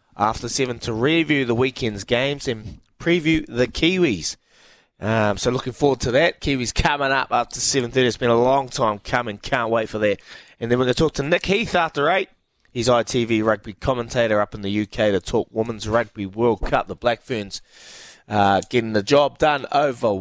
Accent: Australian